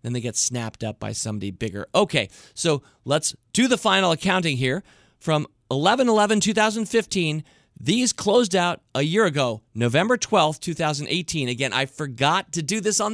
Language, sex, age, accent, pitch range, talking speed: English, male, 40-59, American, 135-190 Hz, 155 wpm